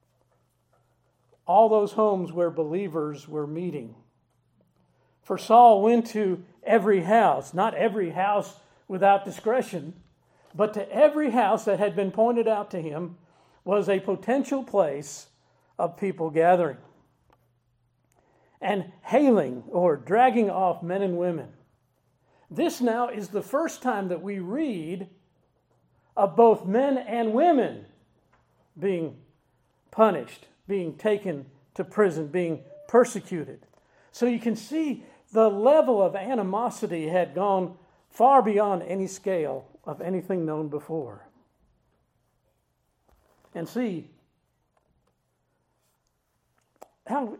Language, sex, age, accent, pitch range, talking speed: English, male, 50-69, American, 170-230 Hz, 110 wpm